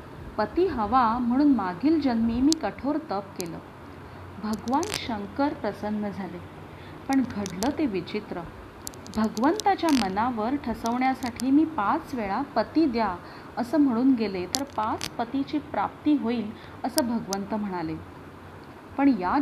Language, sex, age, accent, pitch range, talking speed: Marathi, female, 30-49, native, 210-280 Hz, 115 wpm